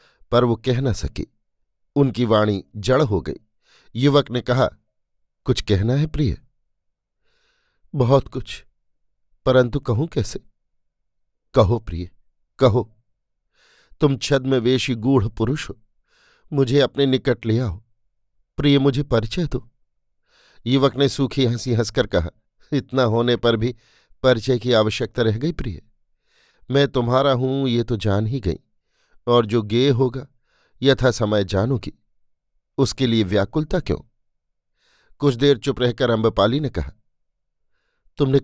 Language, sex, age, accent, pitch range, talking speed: Hindi, male, 50-69, native, 110-130 Hz, 130 wpm